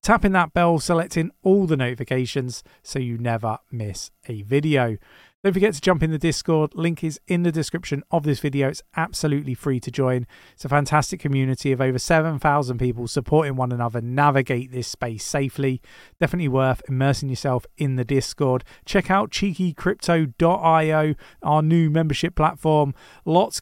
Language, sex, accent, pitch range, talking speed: English, male, British, 130-170 Hz, 160 wpm